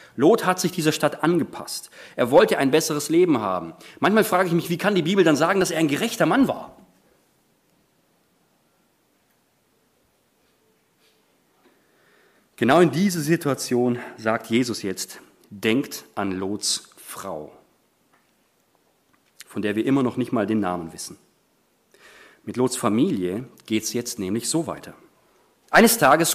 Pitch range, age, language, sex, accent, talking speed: 115-160 Hz, 40-59, German, male, German, 135 wpm